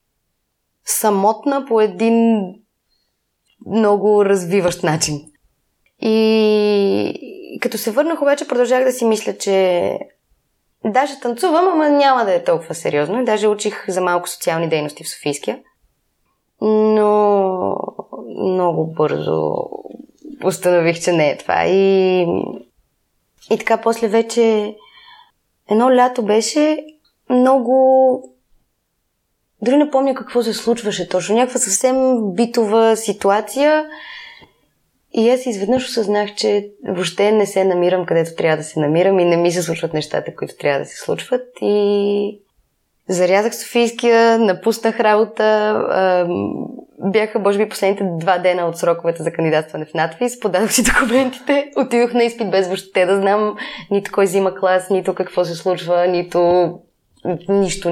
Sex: female